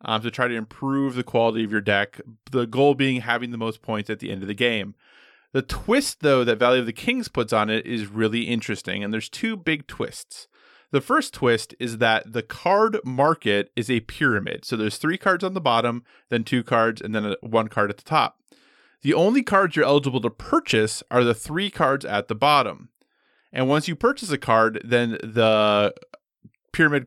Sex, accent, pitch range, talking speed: male, American, 110-150 Hz, 210 wpm